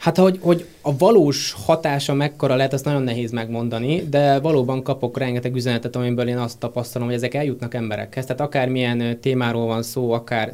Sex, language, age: male, Hungarian, 20-39